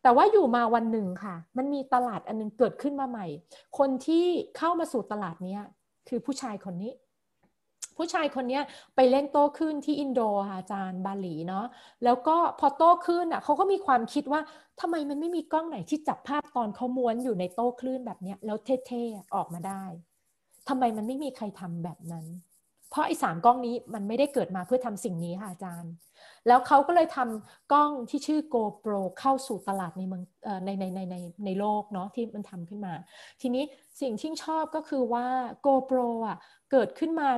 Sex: female